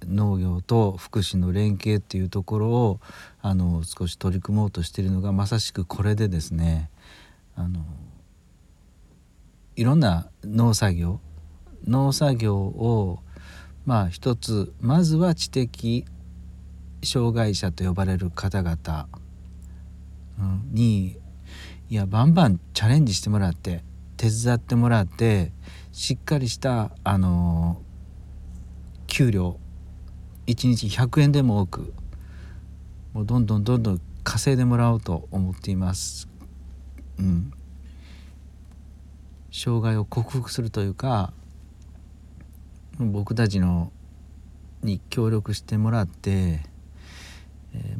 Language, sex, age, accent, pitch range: Japanese, male, 40-59, native, 80-110 Hz